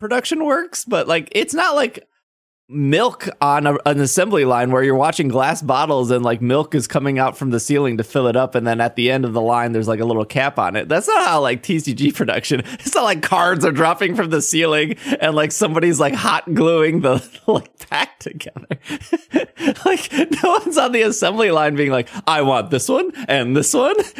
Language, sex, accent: English, male, American